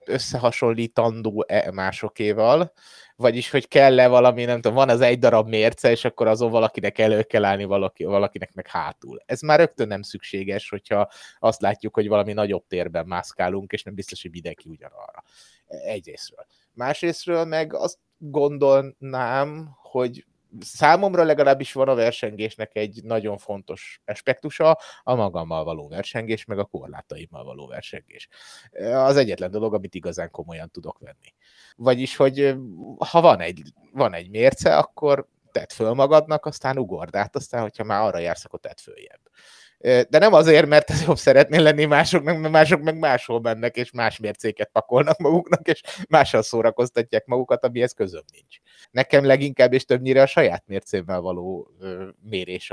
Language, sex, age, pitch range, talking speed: Hungarian, male, 30-49, 105-140 Hz, 150 wpm